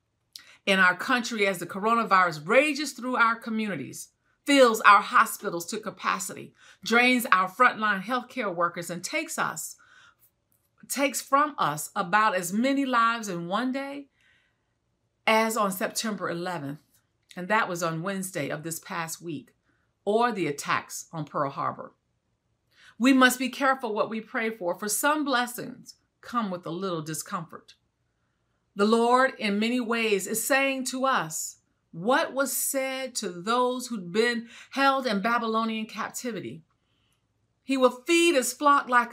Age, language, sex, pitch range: 40-59, English, female, 180-255 Hz